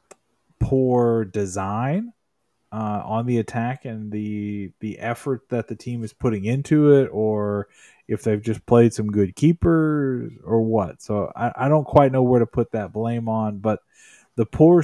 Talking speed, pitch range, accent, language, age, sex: 170 wpm, 110-130 Hz, American, English, 20-39, male